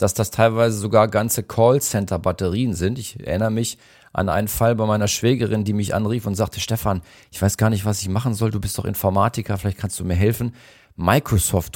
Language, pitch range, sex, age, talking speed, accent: German, 95-115 Hz, male, 40-59, 205 wpm, German